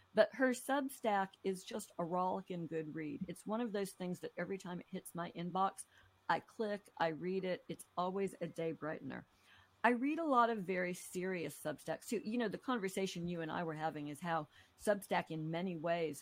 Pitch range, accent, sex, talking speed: 155-190 Hz, American, female, 205 wpm